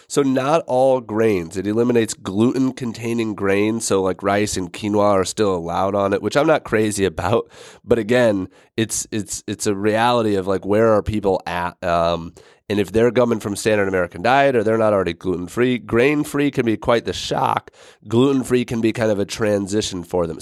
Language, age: English, 30-49